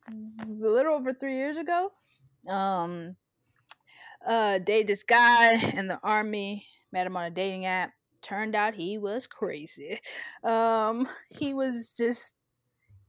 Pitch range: 170-210 Hz